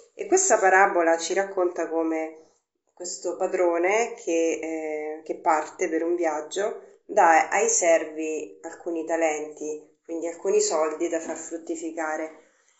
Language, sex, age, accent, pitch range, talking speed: Italian, female, 30-49, native, 160-235 Hz, 120 wpm